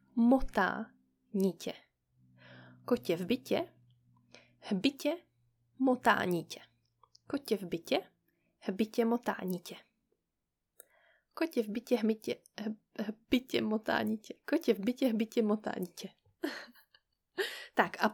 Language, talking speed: Czech, 85 wpm